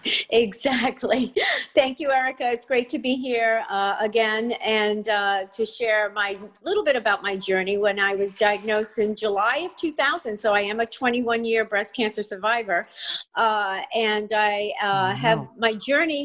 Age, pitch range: 50-69, 210-250 Hz